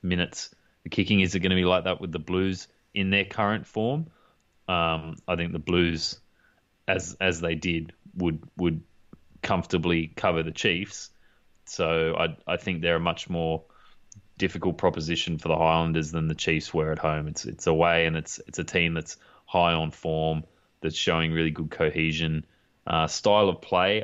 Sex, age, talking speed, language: male, 20-39, 180 wpm, English